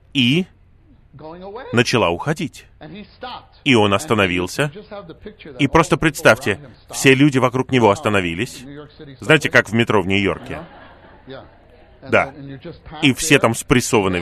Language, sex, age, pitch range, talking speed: Russian, male, 30-49, 100-140 Hz, 105 wpm